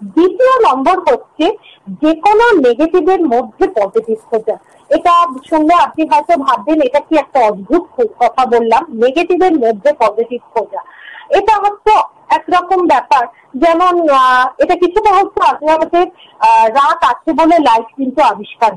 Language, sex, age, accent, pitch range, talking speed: Bengali, female, 50-69, native, 245-355 Hz, 50 wpm